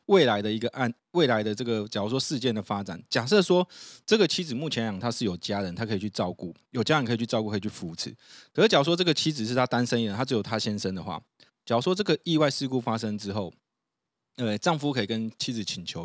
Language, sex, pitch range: Chinese, male, 105-140 Hz